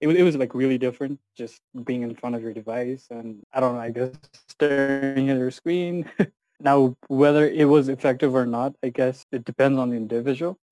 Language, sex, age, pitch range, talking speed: English, male, 20-39, 125-145 Hz, 200 wpm